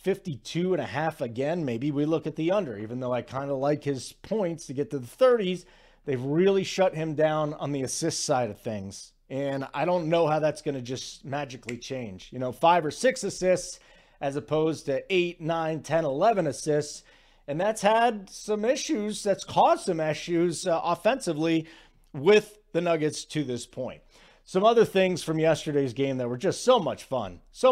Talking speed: 195 wpm